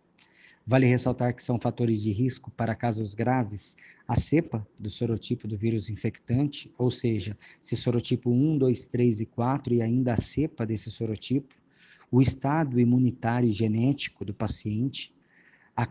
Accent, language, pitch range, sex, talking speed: Brazilian, Portuguese, 115-145 Hz, male, 145 wpm